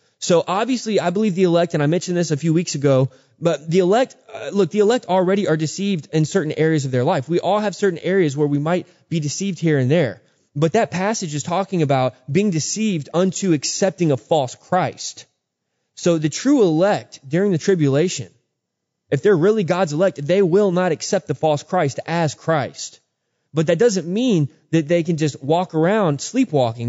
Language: English